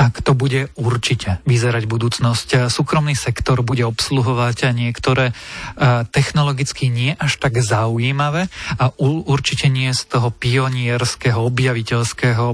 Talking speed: 110 wpm